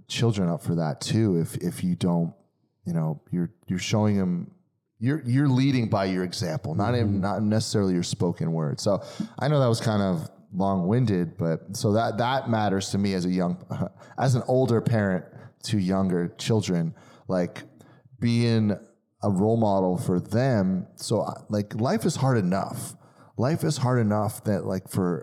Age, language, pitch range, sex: 30-49, English, 100-135 Hz, male